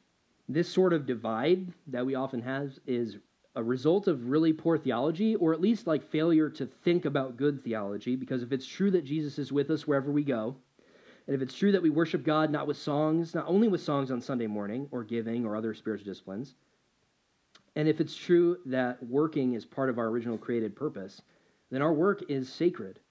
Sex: male